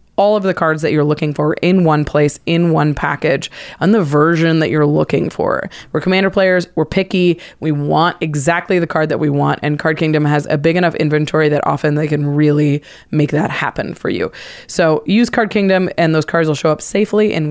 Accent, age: American, 20-39